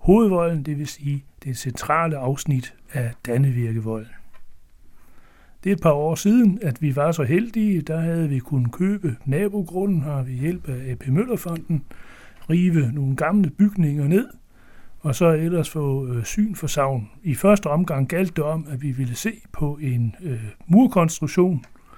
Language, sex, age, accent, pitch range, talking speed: Danish, male, 60-79, native, 130-170 Hz, 155 wpm